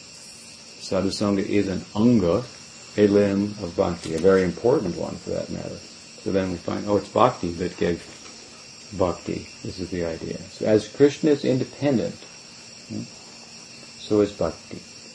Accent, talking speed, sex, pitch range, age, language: American, 145 wpm, male, 90-105 Hz, 60-79, English